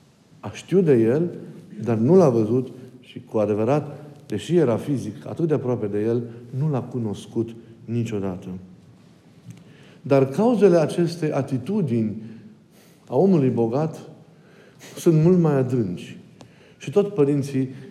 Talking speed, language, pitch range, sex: 125 wpm, Romanian, 120-165 Hz, male